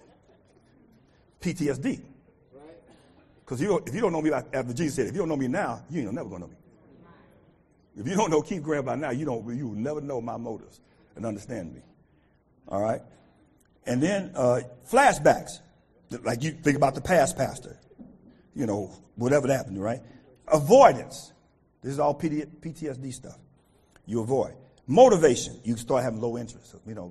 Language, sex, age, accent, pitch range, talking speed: English, male, 50-69, American, 125-195 Hz, 170 wpm